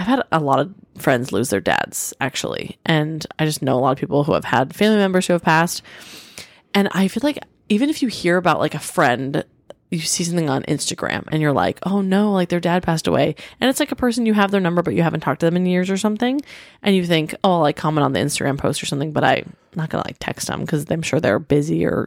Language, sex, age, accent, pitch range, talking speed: English, female, 20-39, American, 155-205 Hz, 265 wpm